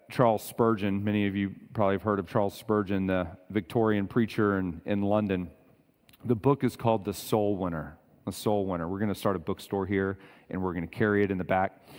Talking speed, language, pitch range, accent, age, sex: 215 wpm, English, 95-115 Hz, American, 40-59, male